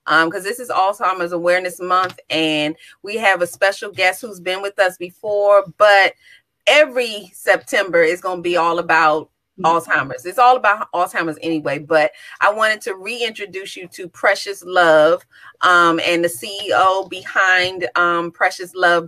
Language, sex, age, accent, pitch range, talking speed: English, female, 30-49, American, 175-210 Hz, 155 wpm